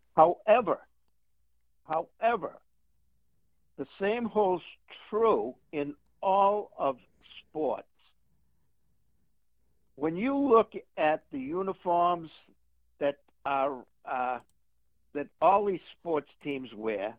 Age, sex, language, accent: 60-79, male, English, American